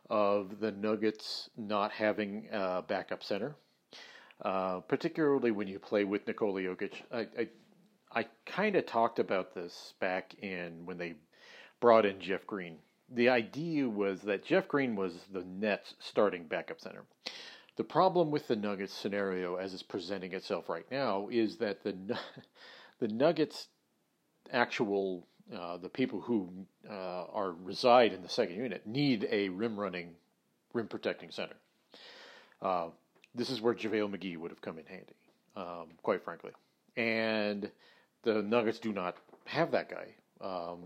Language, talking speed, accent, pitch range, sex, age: English, 150 wpm, American, 95-115 Hz, male, 40-59